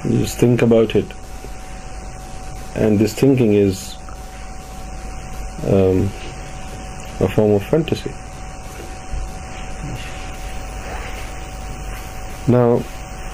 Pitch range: 95-115 Hz